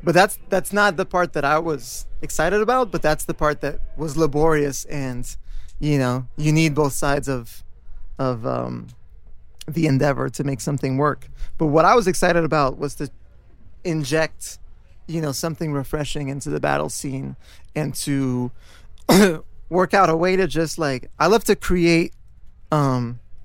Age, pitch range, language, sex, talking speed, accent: 20-39, 125-160 Hz, English, male, 165 wpm, American